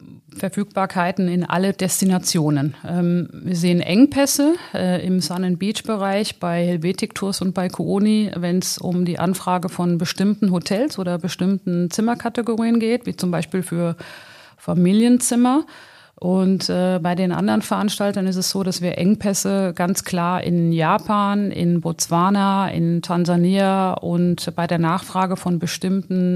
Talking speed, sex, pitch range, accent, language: 145 wpm, female, 175-200 Hz, German, German